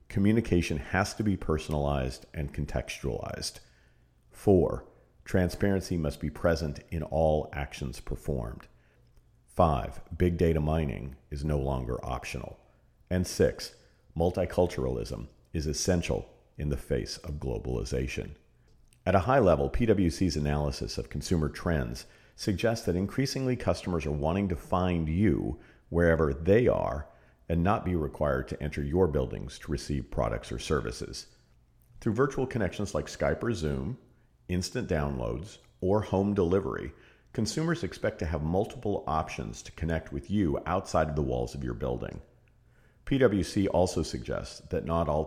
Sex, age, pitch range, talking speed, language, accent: male, 50-69, 70-95 Hz, 135 wpm, English, American